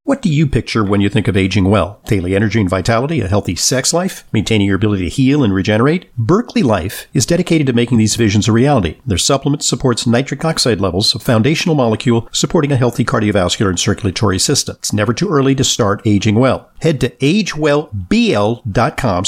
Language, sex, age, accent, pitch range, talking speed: English, male, 50-69, American, 105-145 Hz, 195 wpm